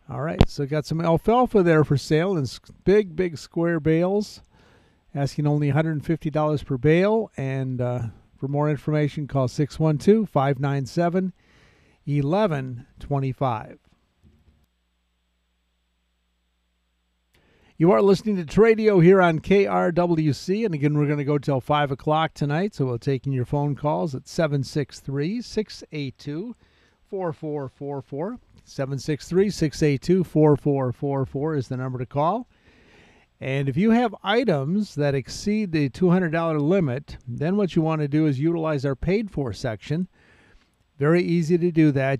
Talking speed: 125 wpm